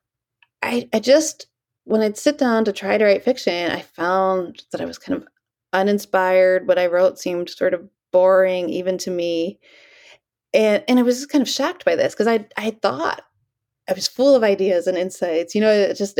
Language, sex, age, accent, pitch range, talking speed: English, female, 30-49, American, 180-235 Hz, 205 wpm